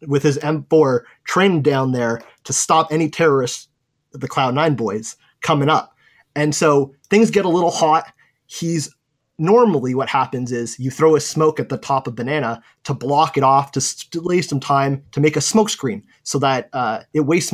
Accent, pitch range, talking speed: American, 135-170 Hz, 190 wpm